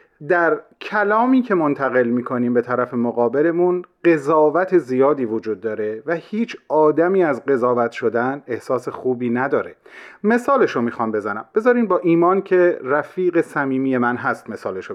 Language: Persian